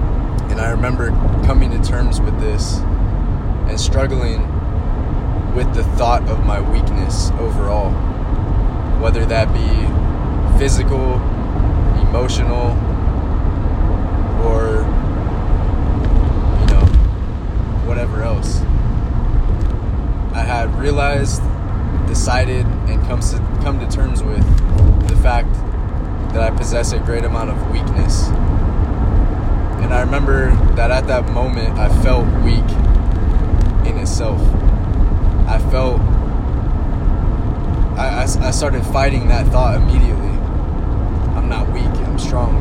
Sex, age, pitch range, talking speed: male, 20-39, 85-105 Hz, 100 wpm